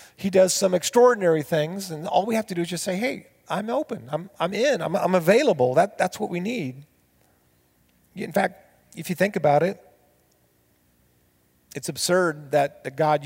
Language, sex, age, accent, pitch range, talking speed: English, male, 40-59, American, 130-180 Hz, 175 wpm